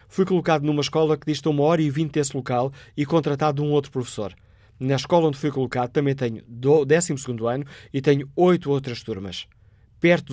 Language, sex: Portuguese, male